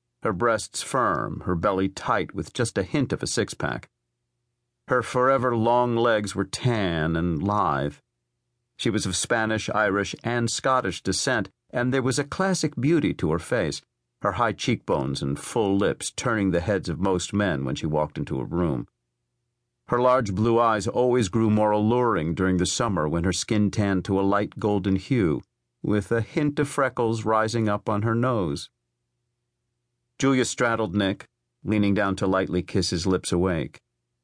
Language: English